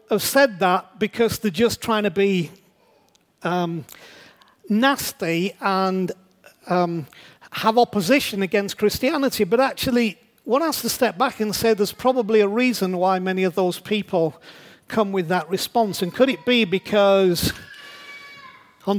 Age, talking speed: 40-59, 140 wpm